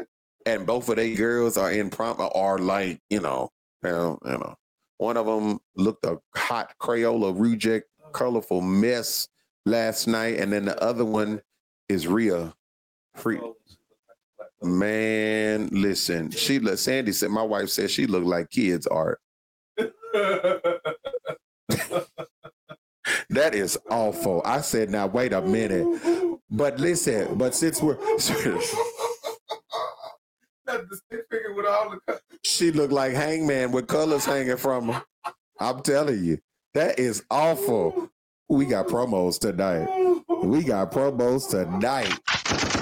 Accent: American